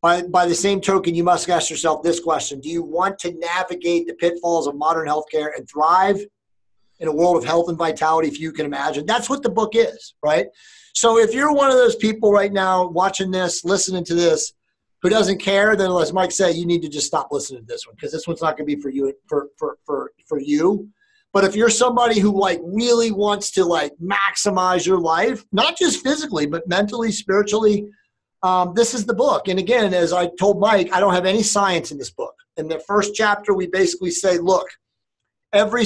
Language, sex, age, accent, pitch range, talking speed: English, male, 30-49, American, 170-230 Hz, 220 wpm